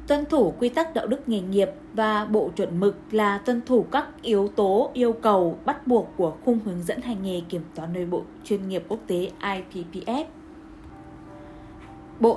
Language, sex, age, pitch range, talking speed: Vietnamese, female, 20-39, 195-245 Hz, 185 wpm